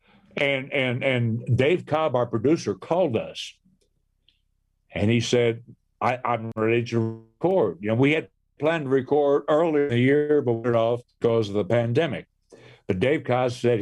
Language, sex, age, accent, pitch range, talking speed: English, male, 60-79, American, 115-140 Hz, 170 wpm